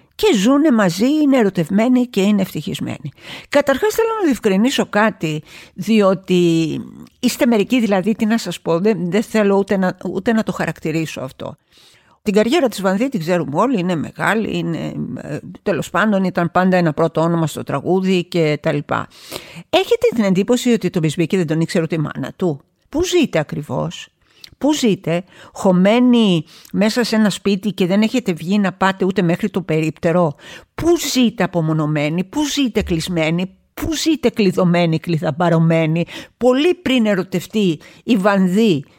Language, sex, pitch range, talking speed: Greek, female, 170-225 Hz, 170 wpm